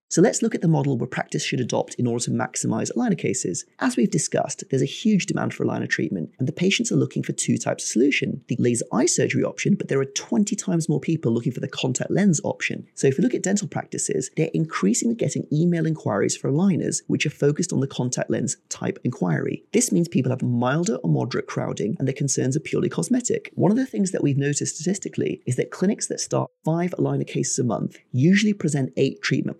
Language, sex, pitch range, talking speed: English, male, 135-195 Hz, 230 wpm